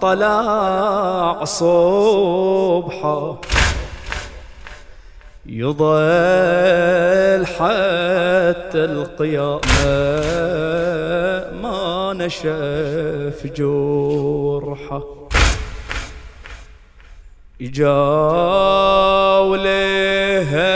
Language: English